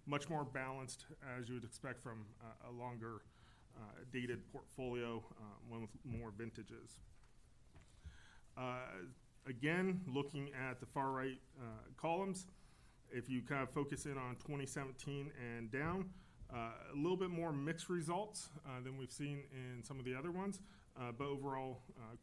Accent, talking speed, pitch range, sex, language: American, 160 wpm, 115-140 Hz, male, English